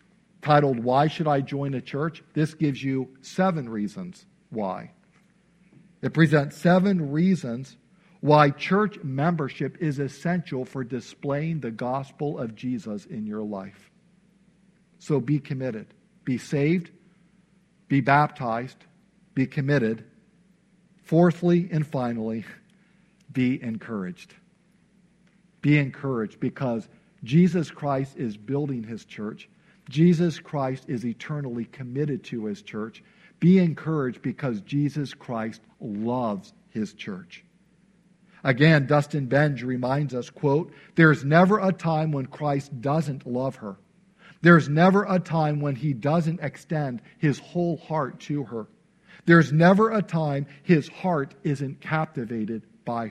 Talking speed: 120 wpm